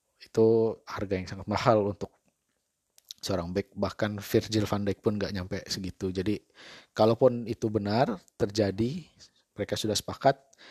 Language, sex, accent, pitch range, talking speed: Indonesian, male, native, 100-115 Hz, 135 wpm